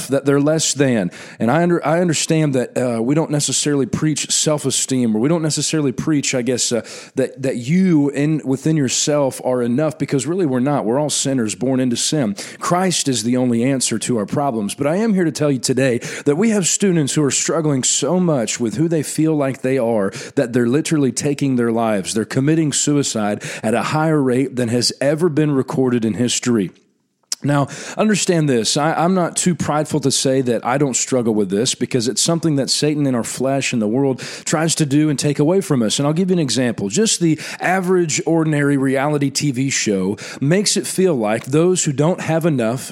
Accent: American